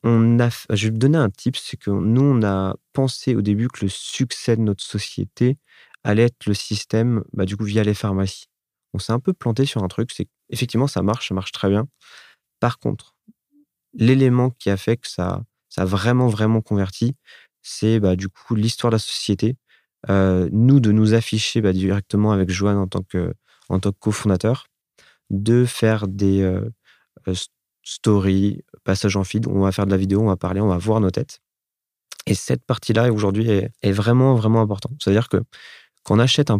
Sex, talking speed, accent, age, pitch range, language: male, 200 wpm, French, 30-49, 95-115 Hz, French